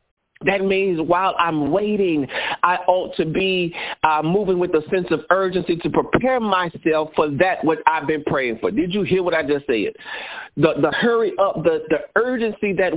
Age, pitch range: 50-69, 160-195 Hz